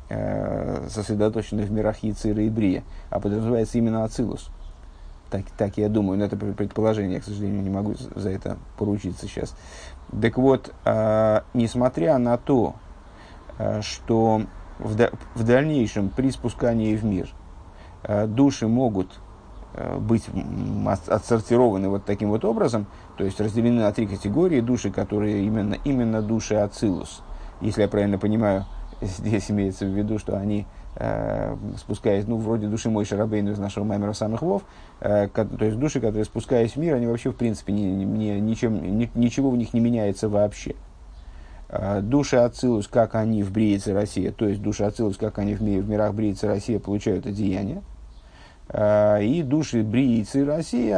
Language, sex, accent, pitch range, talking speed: Russian, male, native, 100-115 Hz, 150 wpm